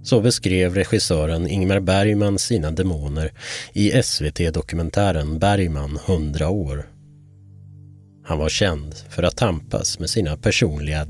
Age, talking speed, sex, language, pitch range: 30-49, 115 wpm, male, Swedish, 85-115 Hz